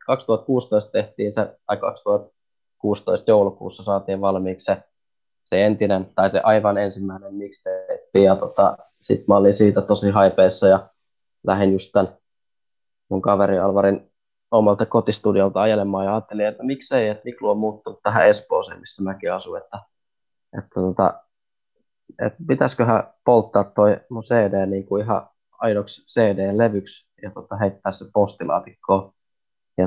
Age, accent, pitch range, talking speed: 20-39, native, 95-115 Hz, 135 wpm